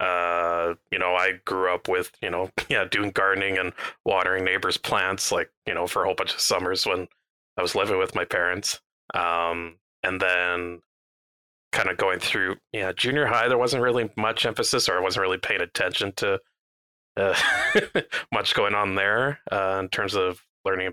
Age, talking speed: 20-39, 185 wpm